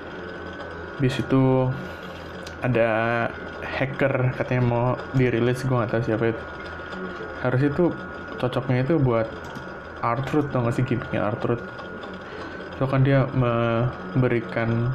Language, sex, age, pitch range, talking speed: Indonesian, male, 20-39, 90-125 Hz, 110 wpm